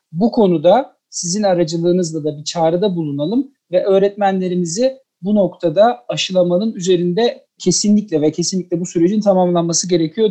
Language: Turkish